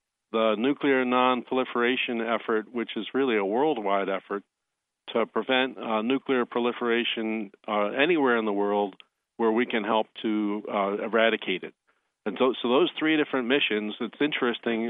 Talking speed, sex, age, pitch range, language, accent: 150 wpm, male, 40-59, 110-125 Hz, English, American